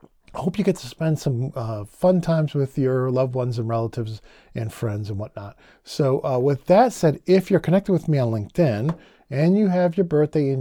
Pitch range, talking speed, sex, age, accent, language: 125-180 Hz, 215 wpm, male, 40-59, American, English